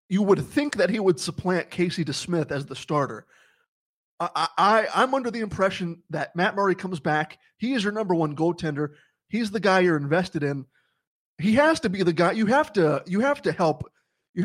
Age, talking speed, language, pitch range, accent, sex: 20-39, 205 wpm, English, 155-195 Hz, American, male